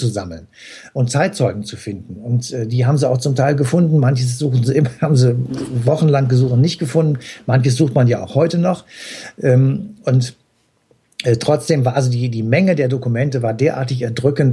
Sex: male